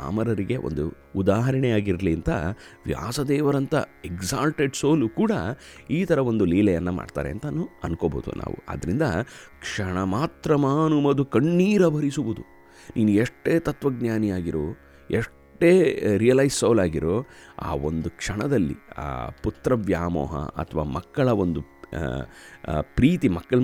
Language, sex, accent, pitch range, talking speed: Kannada, male, native, 85-125 Hz, 95 wpm